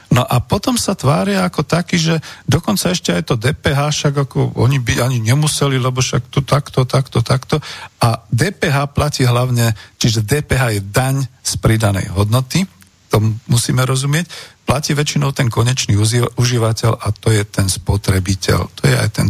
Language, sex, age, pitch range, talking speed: Slovak, male, 50-69, 110-145 Hz, 165 wpm